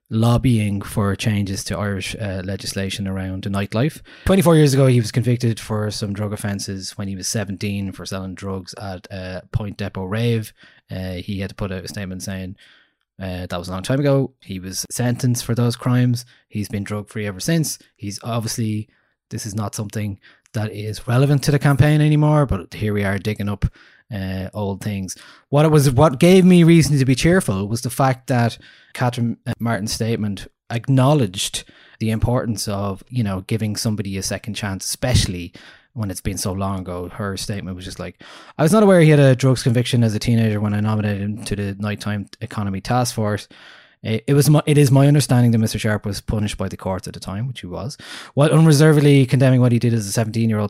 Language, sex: English, male